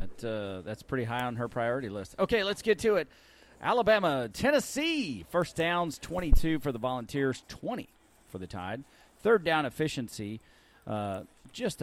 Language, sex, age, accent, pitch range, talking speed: English, male, 40-59, American, 110-145 Hz, 150 wpm